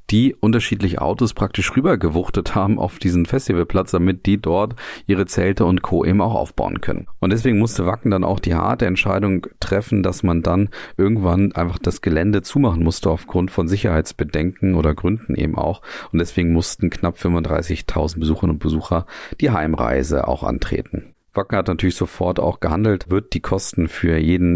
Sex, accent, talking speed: male, German, 170 wpm